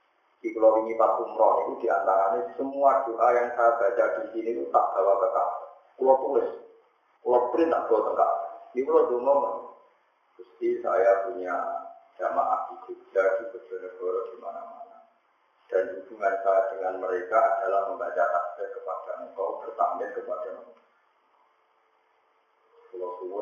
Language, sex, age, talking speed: Indonesian, male, 30-49, 130 wpm